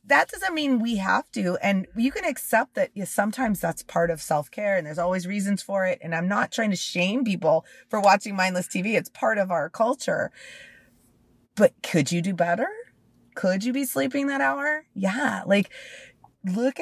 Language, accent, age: English, American, 30-49